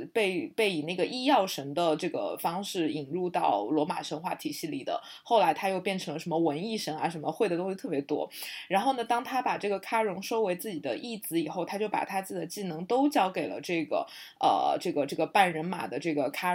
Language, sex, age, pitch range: Chinese, female, 20-39, 175-225 Hz